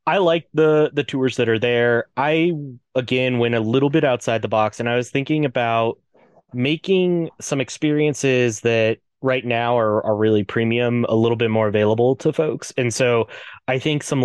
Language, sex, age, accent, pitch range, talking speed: English, male, 20-39, American, 105-135 Hz, 185 wpm